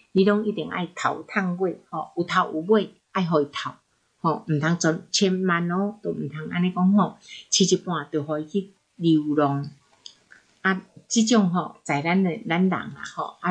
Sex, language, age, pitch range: female, Chinese, 60-79, 165-205 Hz